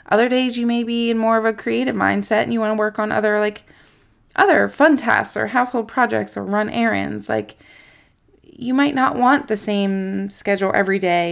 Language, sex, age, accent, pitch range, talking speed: English, female, 20-39, American, 195-235 Hz, 200 wpm